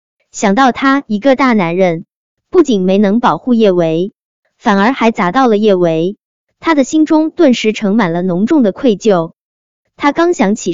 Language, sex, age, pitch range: Chinese, male, 20-39, 190-280 Hz